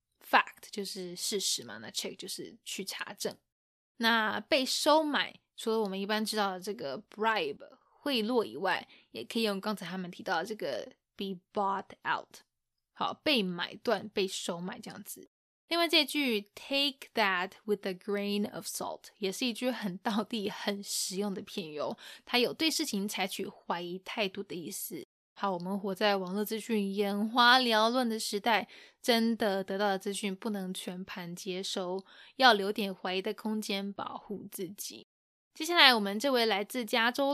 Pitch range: 200-235 Hz